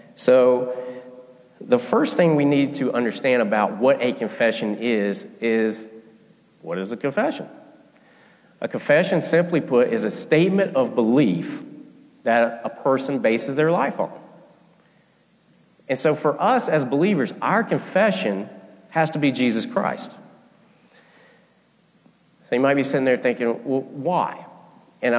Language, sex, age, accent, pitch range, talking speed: English, male, 40-59, American, 120-175 Hz, 135 wpm